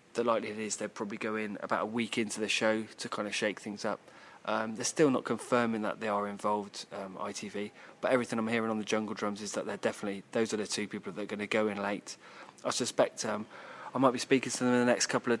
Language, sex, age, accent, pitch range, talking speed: English, male, 20-39, British, 105-115 Hz, 265 wpm